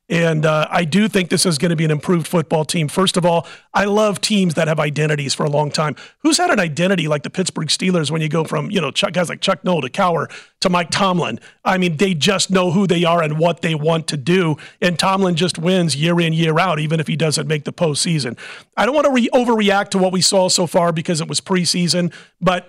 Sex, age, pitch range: male, 40-59, 165-195 Hz